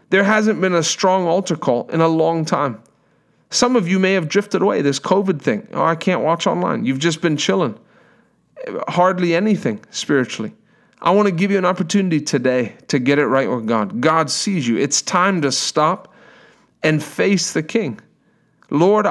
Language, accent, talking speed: English, American, 185 wpm